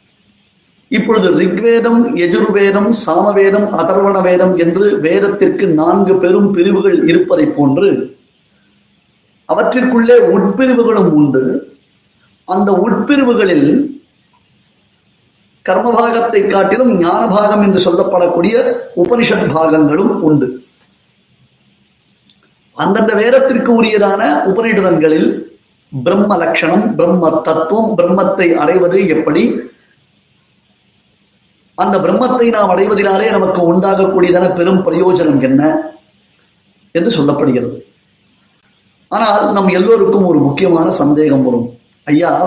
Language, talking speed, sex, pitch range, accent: Tamil, 75 wpm, male, 175-225 Hz, native